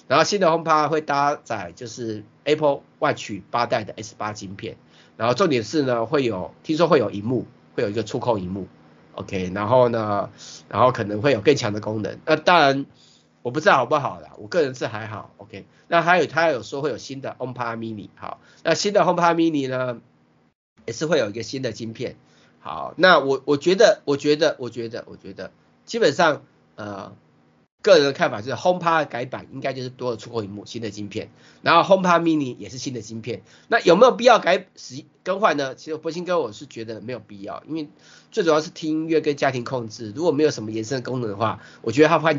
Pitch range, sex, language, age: 115-155 Hz, male, Chinese, 30-49